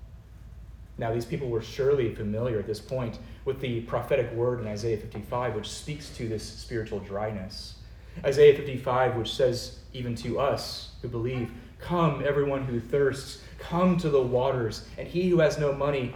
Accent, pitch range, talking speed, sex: American, 105-130 Hz, 165 wpm, male